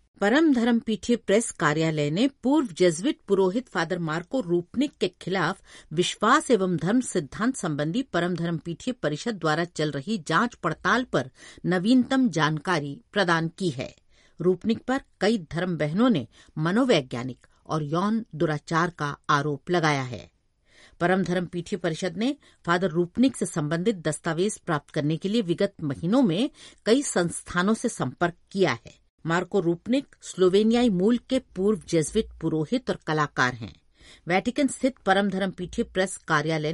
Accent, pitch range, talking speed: native, 155-225 Hz, 145 wpm